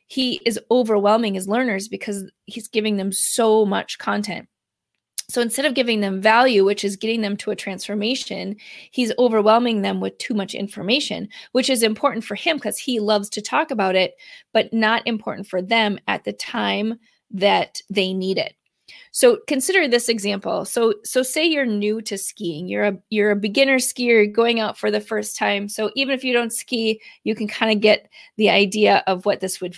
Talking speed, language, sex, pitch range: 195 wpm, English, female, 200-245 Hz